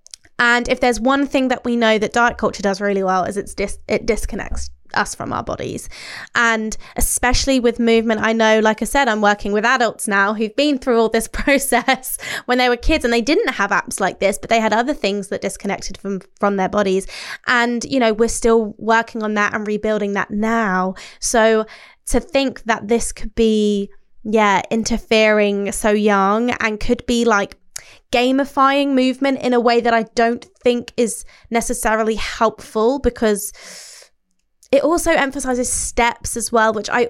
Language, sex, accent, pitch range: English, female, British, 200-240 Hz